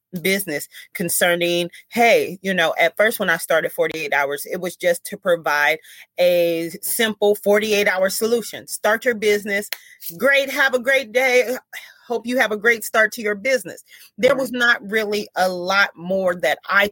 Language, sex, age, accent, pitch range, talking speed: English, female, 30-49, American, 175-220 Hz, 170 wpm